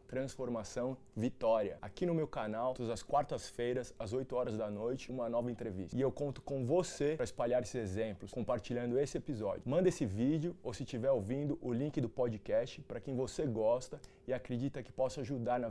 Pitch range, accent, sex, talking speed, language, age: 125-155 Hz, Brazilian, male, 190 wpm, Portuguese, 20-39